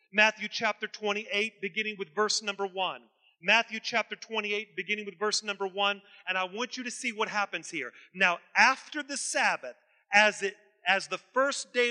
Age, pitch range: 40-59, 200-230 Hz